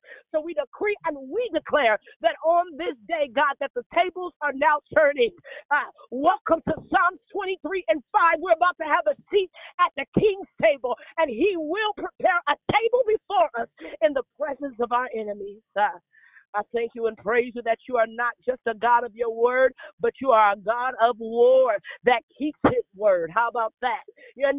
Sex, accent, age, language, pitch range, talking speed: female, American, 40-59, English, 230-335 Hz, 195 wpm